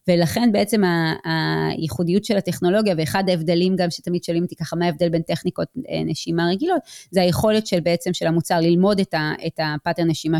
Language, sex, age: Hebrew, female, 20-39